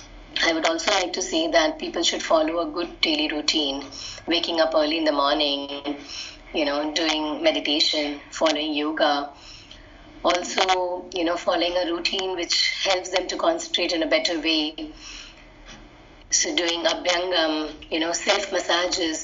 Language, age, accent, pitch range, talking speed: English, 30-49, Indian, 165-200 Hz, 150 wpm